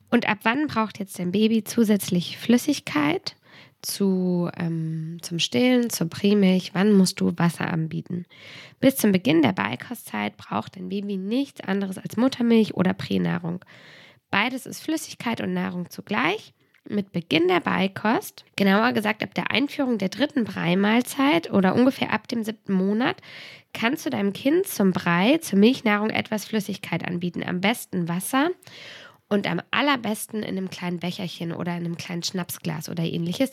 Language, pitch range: German, 185-250 Hz